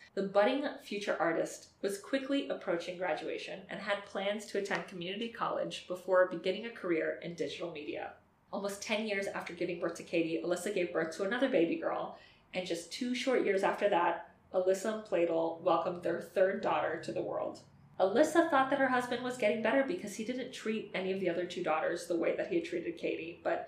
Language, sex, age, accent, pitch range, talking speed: English, female, 20-39, American, 170-210 Hz, 205 wpm